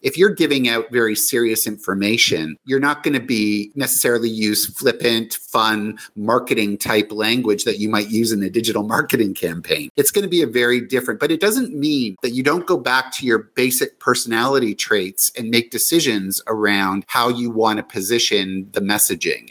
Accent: American